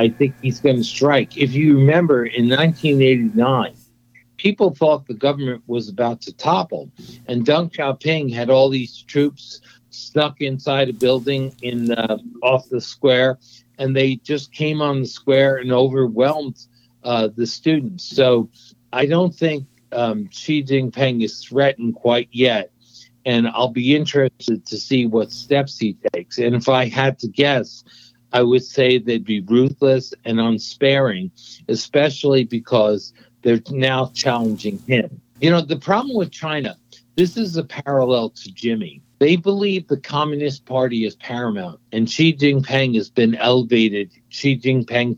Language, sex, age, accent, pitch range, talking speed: English, male, 60-79, American, 120-140 Hz, 155 wpm